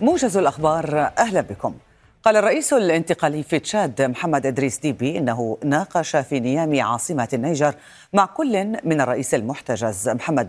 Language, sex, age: Arabic, female, 40-59